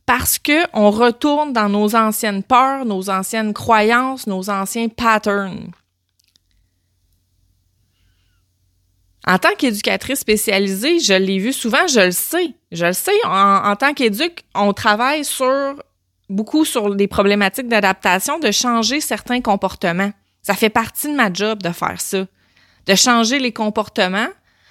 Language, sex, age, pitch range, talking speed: French, female, 30-49, 185-255 Hz, 140 wpm